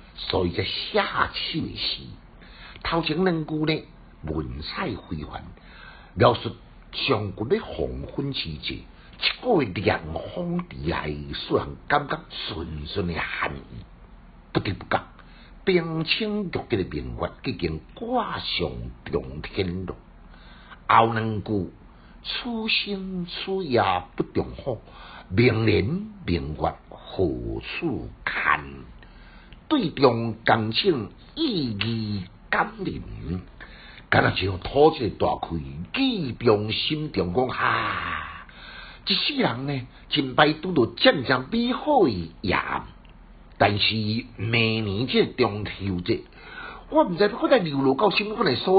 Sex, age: male, 60-79